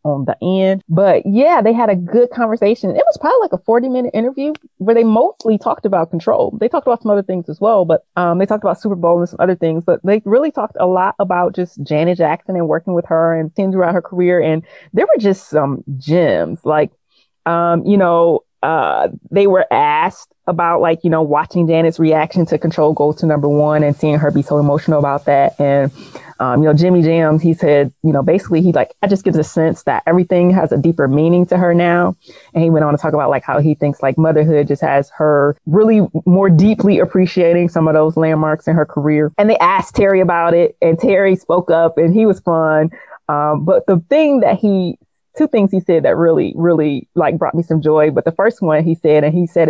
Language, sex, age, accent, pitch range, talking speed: English, female, 30-49, American, 150-185 Hz, 230 wpm